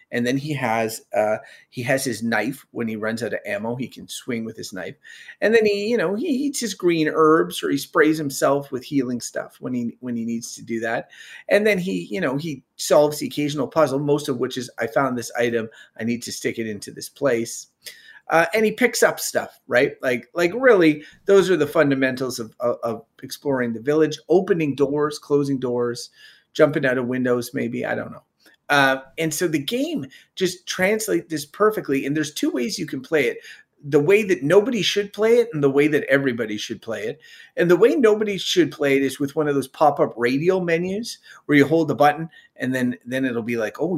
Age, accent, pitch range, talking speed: 30-49, American, 125-180 Hz, 220 wpm